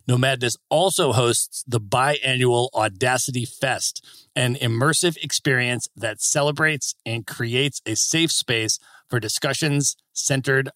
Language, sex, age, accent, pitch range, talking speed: English, male, 40-59, American, 120-150 Hz, 110 wpm